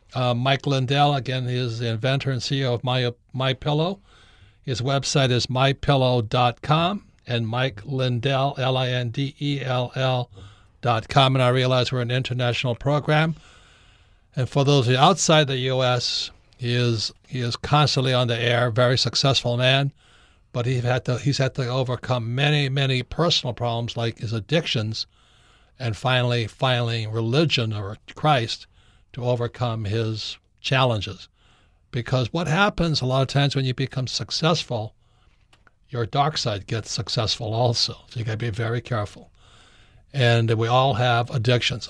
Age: 60-79